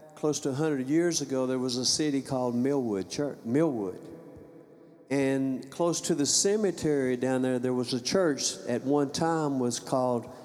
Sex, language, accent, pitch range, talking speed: male, English, American, 125-150 Hz, 165 wpm